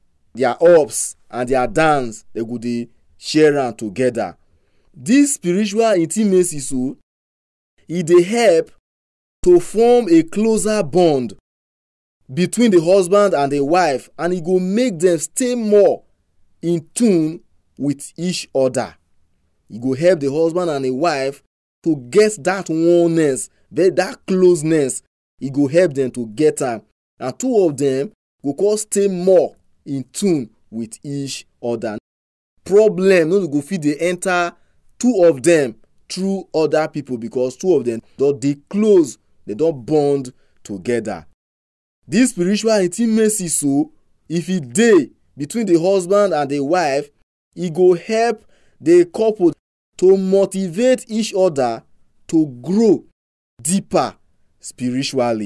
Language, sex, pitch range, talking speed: English, male, 130-190 Hz, 135 wpm